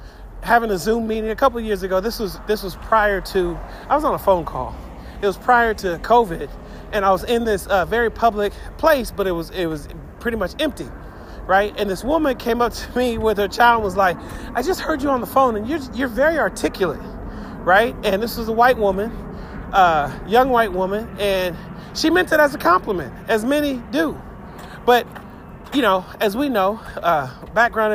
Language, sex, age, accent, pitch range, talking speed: English, male, 40-59, American, 190-235 Hz, 210 wpm